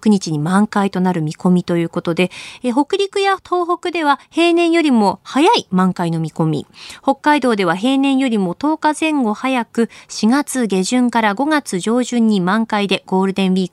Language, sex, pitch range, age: Japanese, female, 185-275 Hz, 20-39